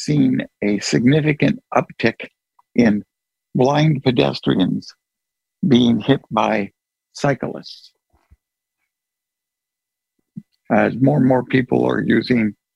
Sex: male